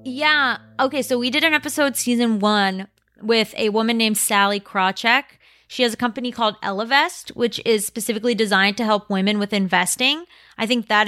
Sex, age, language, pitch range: female, 20-39, English, 200-245 Hz